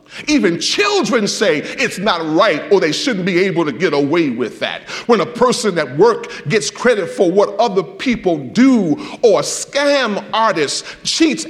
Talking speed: 170 wpm